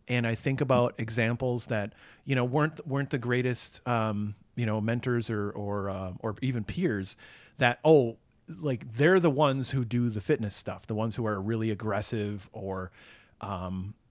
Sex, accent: male, American